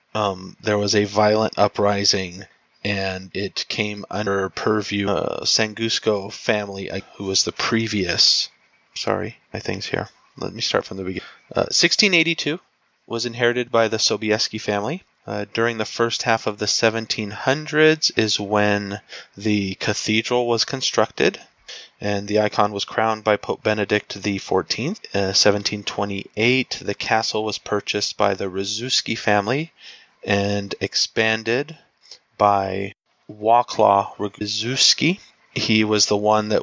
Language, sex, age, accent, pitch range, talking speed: English, male, 30-49, American, 100-115 Hz, 130 wpm